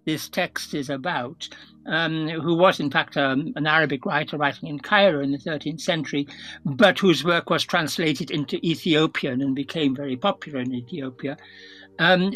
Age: 60-79